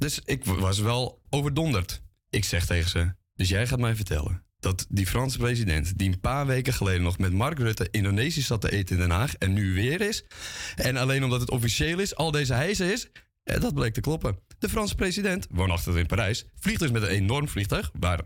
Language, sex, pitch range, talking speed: Dutch, male, 95-145 Hz, 215 wpm